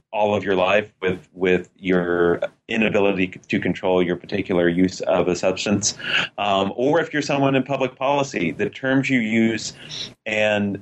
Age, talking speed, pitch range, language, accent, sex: 30-49, 160 wpm, 95-110 Hz, English, American, male